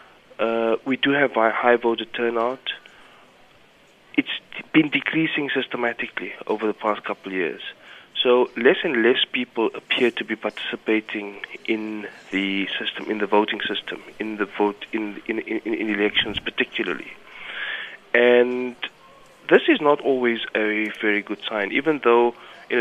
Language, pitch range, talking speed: English, 110-170 Hz, 140 wpm